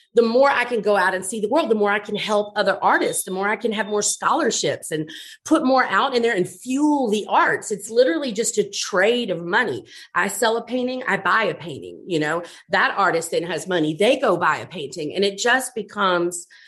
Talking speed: 235 wpm